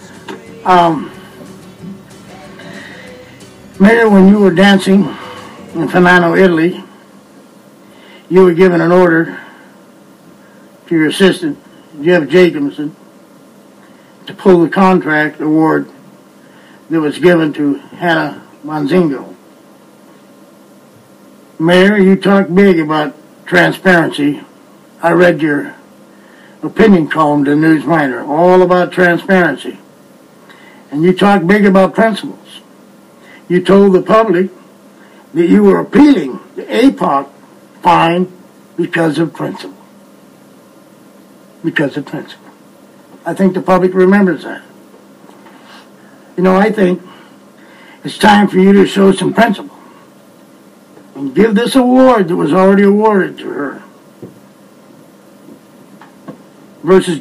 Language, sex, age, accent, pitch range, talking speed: English, male, 60-79, American, 170-195 Hz, 105 wpm